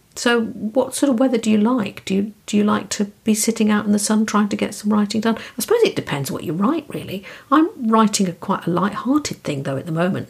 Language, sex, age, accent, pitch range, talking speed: English, female, 50-69, British, 175-220 Hz, 270 wpm